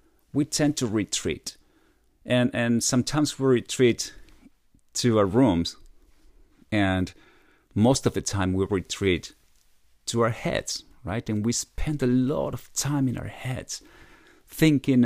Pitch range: 110-145 Hz